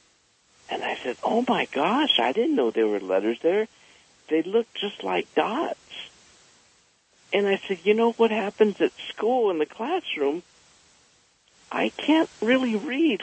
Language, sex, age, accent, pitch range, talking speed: English, male, 50-69, American, 145-225 Hz, 155 wpm